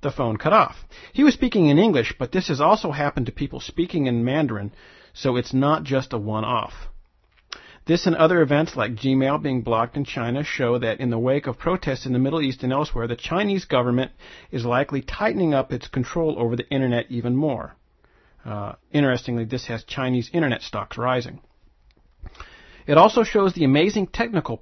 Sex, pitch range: male, 120-150 Hz